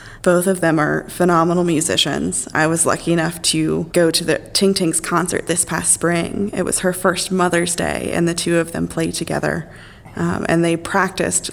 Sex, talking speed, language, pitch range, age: female, 195 wpm, English, 160-180 Hz, 20-39